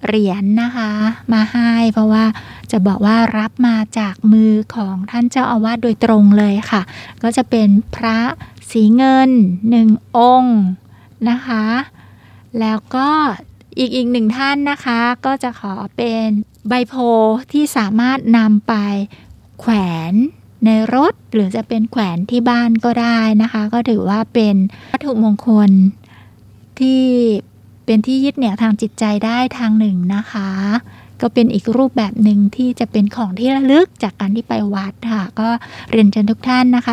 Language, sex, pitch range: Thai, female, 210-245 Hz